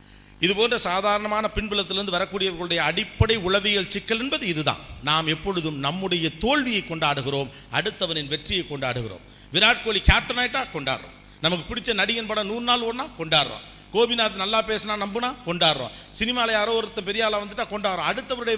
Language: Tamil